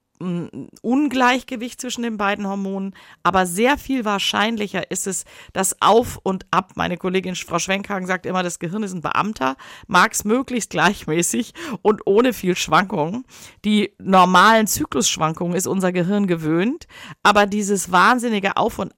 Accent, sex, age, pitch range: German, female, 50-69, 170-220 Hz